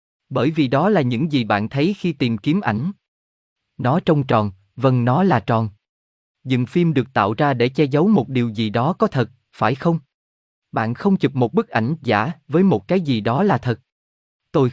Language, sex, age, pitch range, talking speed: Vietnamese, male, 20-39, 110-155 Hz, 205 wpm